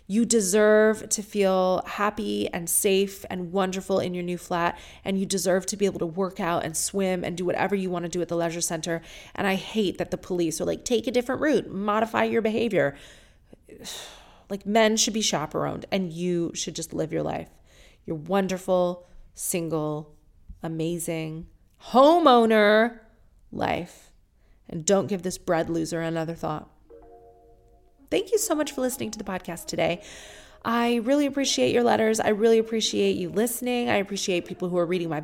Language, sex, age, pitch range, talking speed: English, female, 30-49, 170-225 Hz, 175 wpm